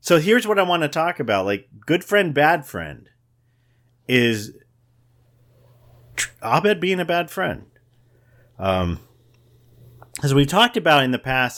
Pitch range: 100-130 Hz